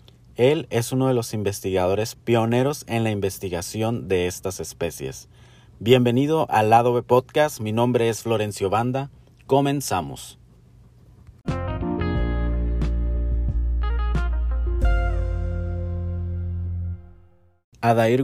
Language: Spanish